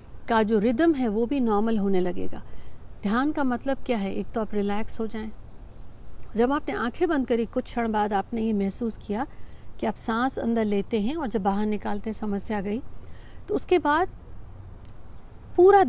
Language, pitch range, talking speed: Hindi, 210-255 Hz, 185 wpm